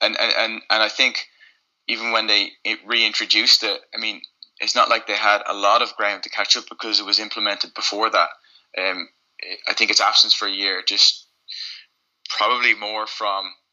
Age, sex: 20-39, male